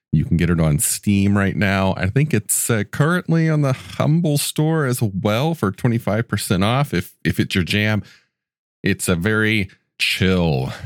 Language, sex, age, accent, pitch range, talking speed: English, male, 40-59, American, 85-110 Hz, 170 wpm